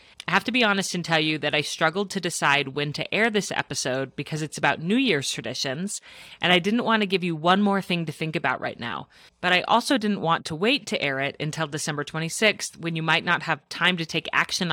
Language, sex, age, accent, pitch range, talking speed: English, female, 30-49, American, 150-195 Hz, 250 wpm